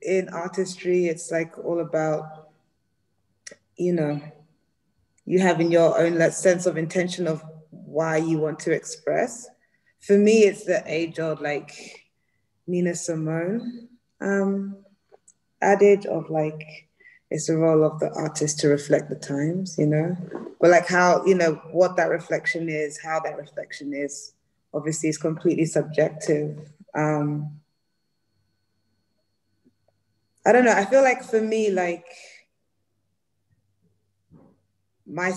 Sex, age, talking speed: female, 20-39, 125 wpm